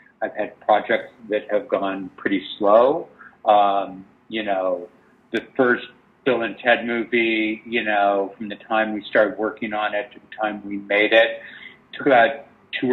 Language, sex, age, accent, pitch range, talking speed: English, male, 50-69, American, 100-110 Hz, 165 wpm